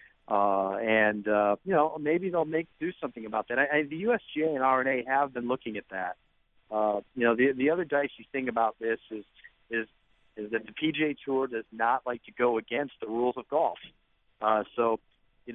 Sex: male